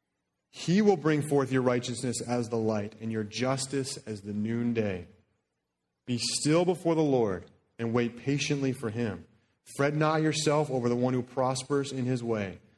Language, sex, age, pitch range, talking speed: English, male, 30-49, 115-150 Hz, 170 wpm